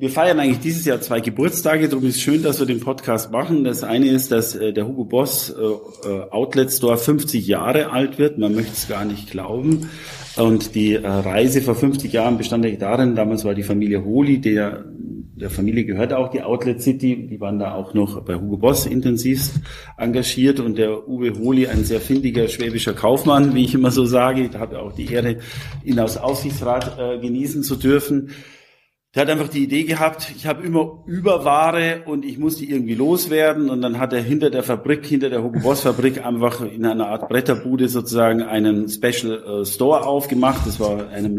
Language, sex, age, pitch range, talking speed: German, male, 40-59, 110-135 Hz, 195 wpm